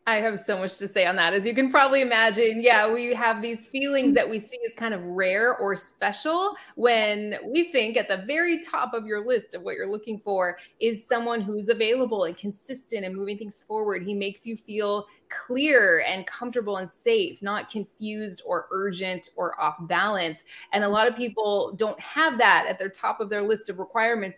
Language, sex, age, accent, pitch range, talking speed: English, female, 20-39, American, 195-235 Hz, 205 wpm